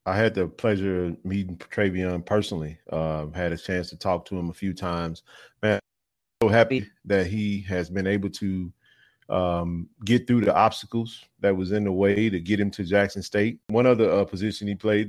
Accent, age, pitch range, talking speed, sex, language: American, 30-49, 95-115 Hz, 205 wpm, male, English